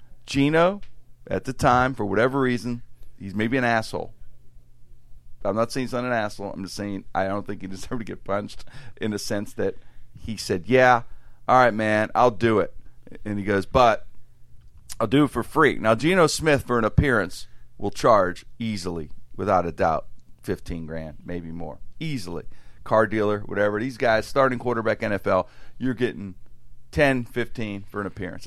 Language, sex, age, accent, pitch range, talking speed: English, male, 50-69, American, 95-130 Hz, 175 wpm